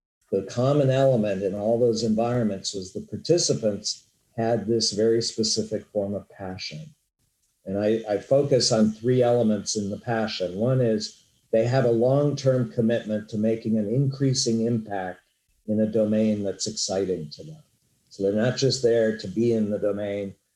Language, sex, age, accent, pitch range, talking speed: English, male, 50-69, American, 105-130 Hz, 165 wpm